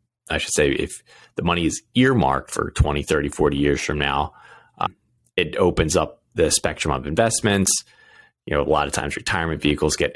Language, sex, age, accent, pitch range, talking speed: English, male, 30-49, American, 75-95 Hz, 190 wpm